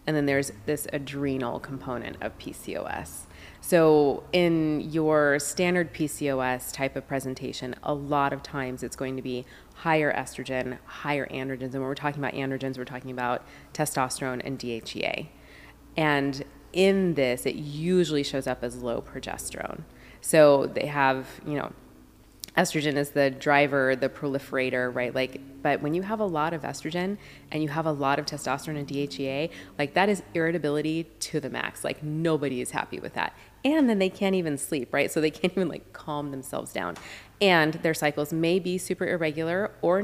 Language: English